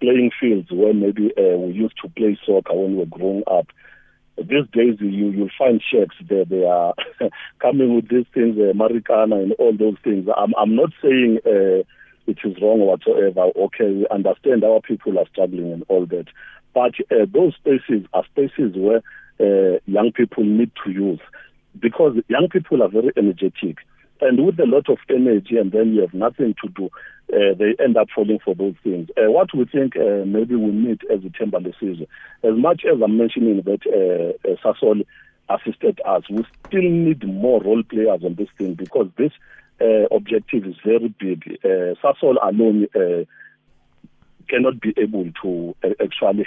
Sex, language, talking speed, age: male, English, 185 wpm, 50-69